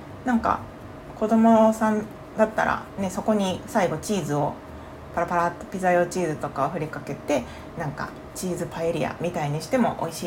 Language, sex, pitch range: Japanese, female, 155-220 Hz